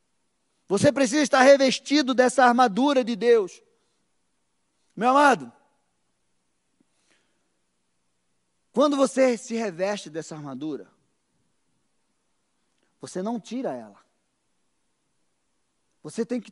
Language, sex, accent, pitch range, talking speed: Portuguese, male, Brazilian, 225-275 Hz, 85 wpm